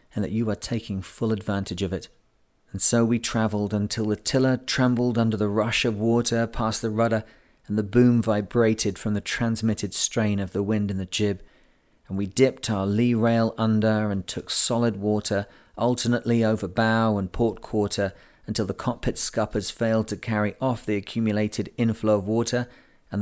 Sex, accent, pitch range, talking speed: male, British, 105-115 Hz, 180 wpm